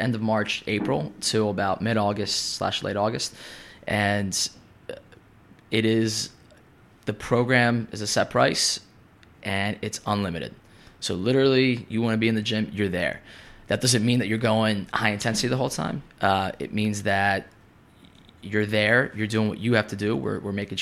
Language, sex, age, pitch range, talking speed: English, male, 20-39, 100-110 Hz, 170 wpm